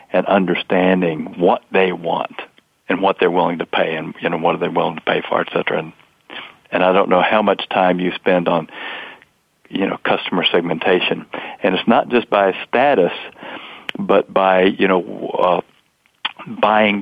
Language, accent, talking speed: English, American, 175 wpm